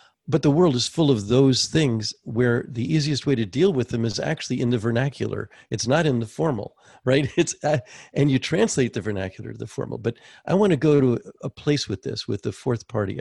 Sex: male